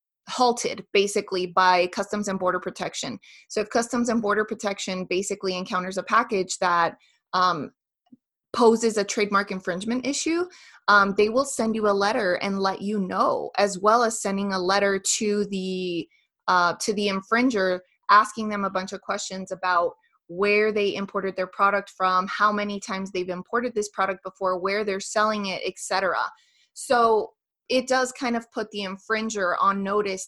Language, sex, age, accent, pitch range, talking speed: English, female, 20-39, American, 190-230 Hz, 165 wpm